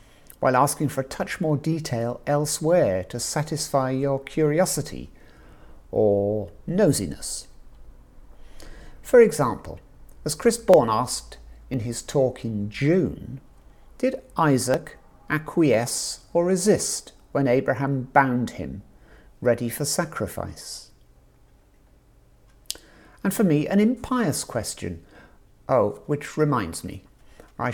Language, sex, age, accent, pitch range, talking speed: English, male, 50-69, British, 110-160 Hz, 105 wpm